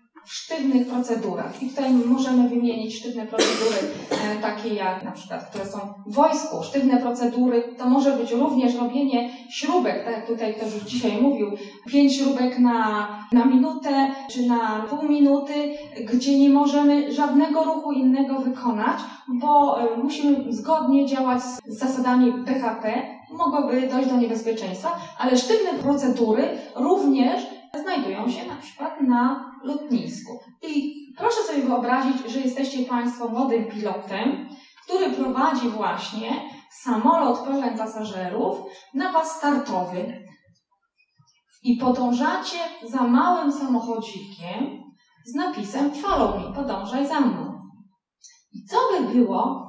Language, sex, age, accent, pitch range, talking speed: Polish, female, 20-39, native, 235-285 Hz, 125 wpm